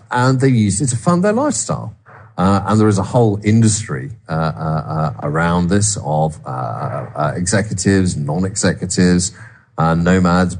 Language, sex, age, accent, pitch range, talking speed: English, male, 40-59, British, 90-115 Hz, 145 wpm